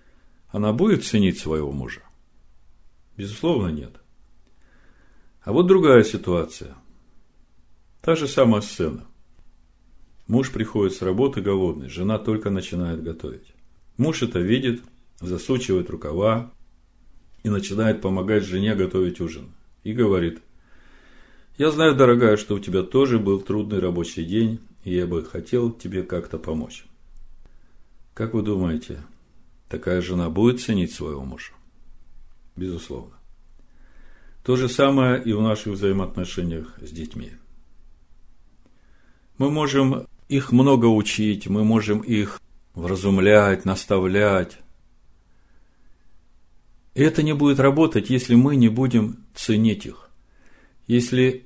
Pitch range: 90-120 Hz